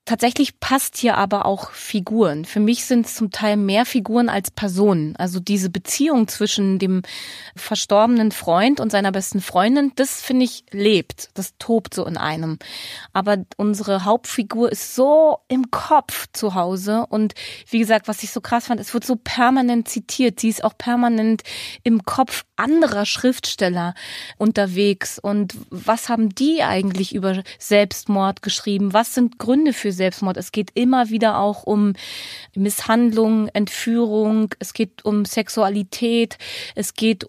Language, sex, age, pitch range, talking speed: German, female, 20-39, 200-240 Hz, 150 wpm